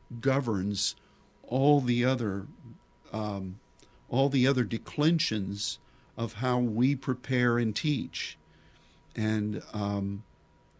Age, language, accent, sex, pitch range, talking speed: 50-69, English, American, male, 100-130 Hz, 95 wpm